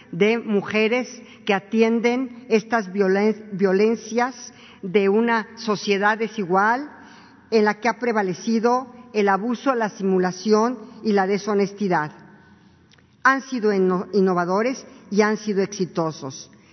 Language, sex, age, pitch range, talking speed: Spanish, female, 50-69, 185-230 Hz, 105 wpm